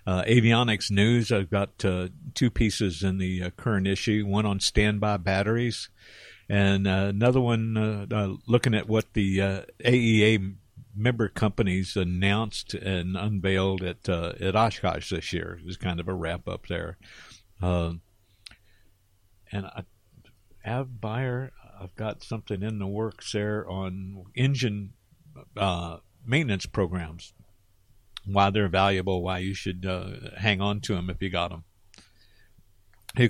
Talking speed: 145 wpm